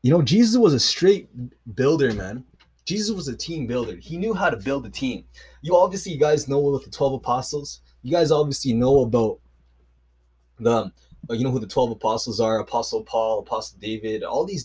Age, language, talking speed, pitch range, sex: 20-39, English, 195 wpm, 110-150 Hz, male